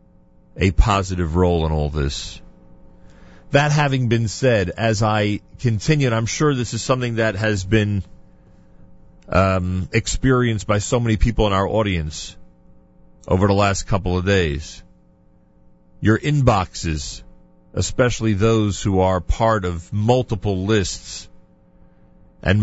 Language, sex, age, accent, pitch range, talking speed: English, male, 40-59, American, 75-115 Hz, 125 wpm